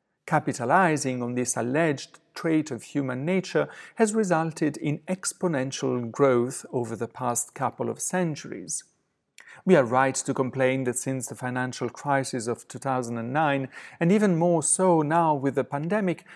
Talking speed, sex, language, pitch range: 145 wpm, male, English, 135-180 Hz